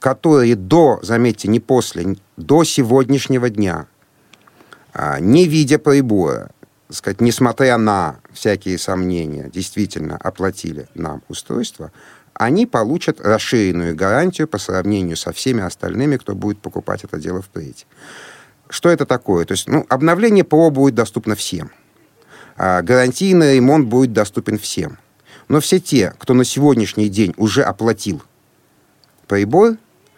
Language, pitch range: Russian, 95-135 Hz